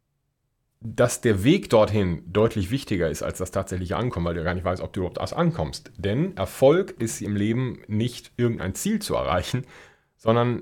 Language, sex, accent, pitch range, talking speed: German, male, German, 100-125 Hz, 175 wpm